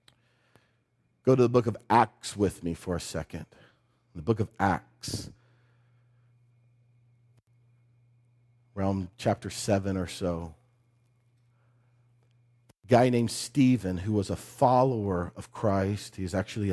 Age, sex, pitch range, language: 40-59, male, 115-140 Hz, English